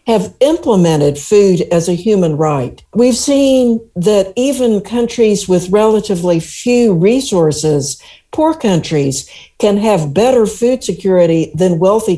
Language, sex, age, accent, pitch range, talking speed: English, female, 60-79, American, 175-225 Hz, 125 wpm